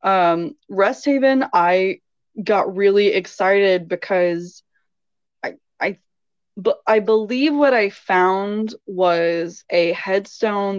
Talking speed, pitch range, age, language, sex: 105 wpm, 175-220 Hz, 20-39, English, female